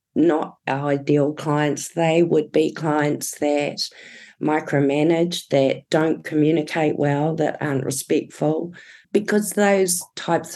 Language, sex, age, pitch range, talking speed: English, female, 40-59, 135-155 Hz, 115 wpm